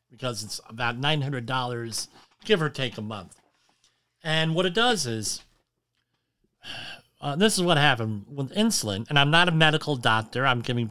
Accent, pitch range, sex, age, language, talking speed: American, 115-145 Hz, male, 40-59, English, 170 wpm